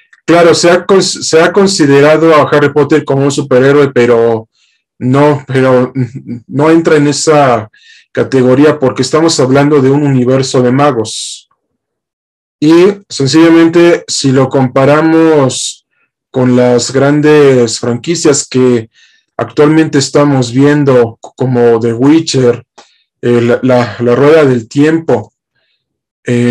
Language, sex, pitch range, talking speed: Spanish, male, 125-150 Hz, 120 wpm